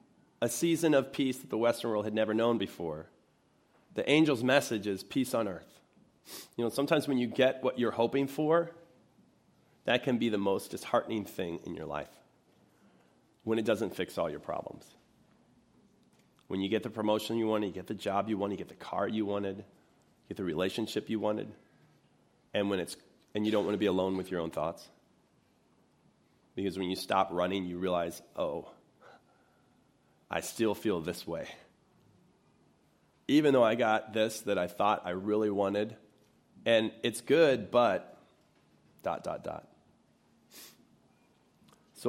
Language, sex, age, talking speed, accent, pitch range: English, male, 30-49, 165 wpm, American, 100-125 Hz